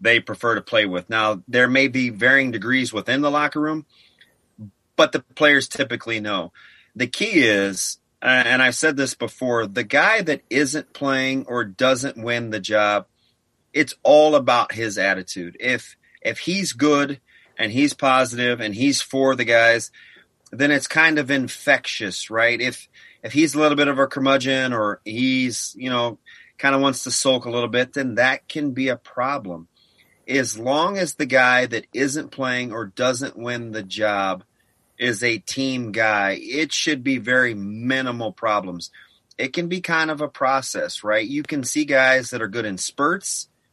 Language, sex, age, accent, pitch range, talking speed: English, male, 30-49, American, 115-140 Hz, 175 wpm